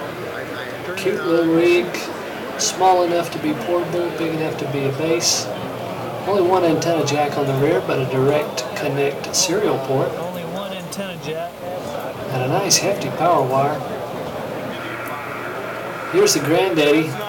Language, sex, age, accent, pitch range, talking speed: English, male, 50-69, American, 140-165 Hz, 125 wpm